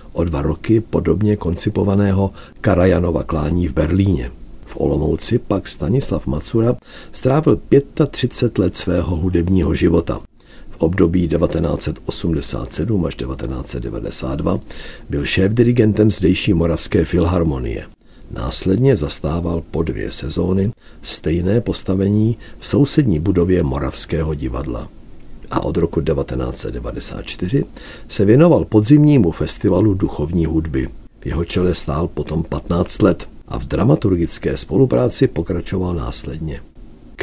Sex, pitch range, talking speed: male, 80-100 Hz, 105 wpm